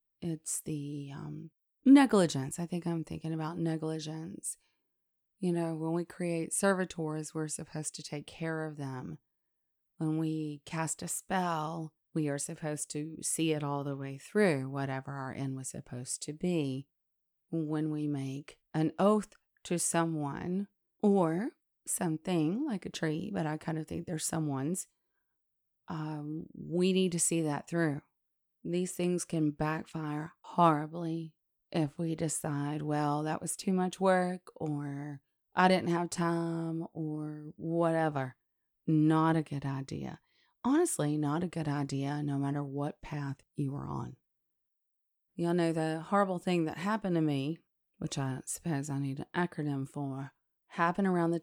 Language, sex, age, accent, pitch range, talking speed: English, female, 30-49, American, 150-170 Hz, 150 wpm